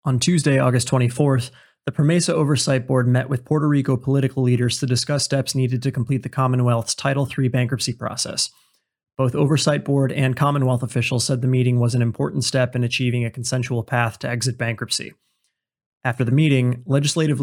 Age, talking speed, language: 30-49, 175 wpm, English